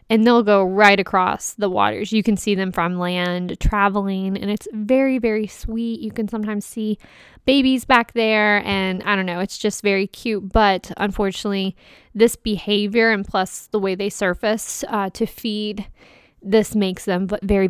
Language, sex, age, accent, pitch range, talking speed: English, female, 20-39, American, 190-220 Hz, 175 wpm